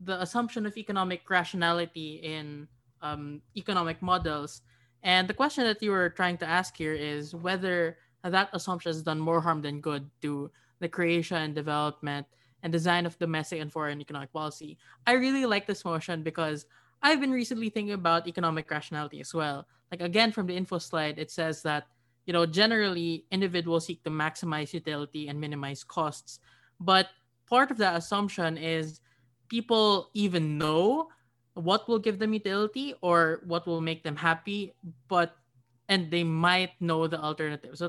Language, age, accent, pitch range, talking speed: English, 20-39, Filipino, 155-190 Hz, 165 wpm